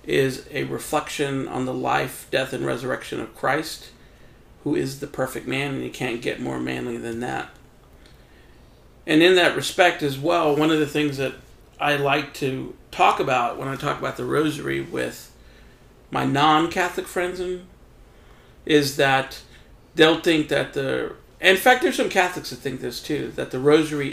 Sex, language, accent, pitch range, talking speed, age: male, English, American, 135-160 Hz, 170 wpm, 40-59